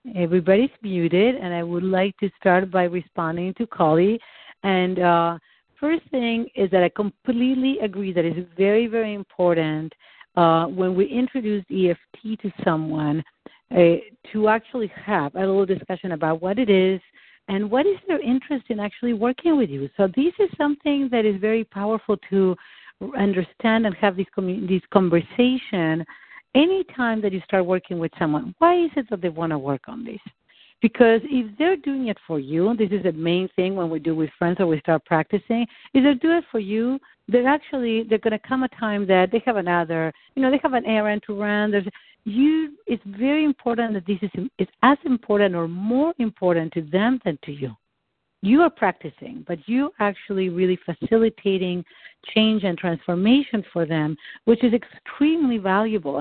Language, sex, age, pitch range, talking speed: English, female, 50-69, 180-235 Hz, 180 wpm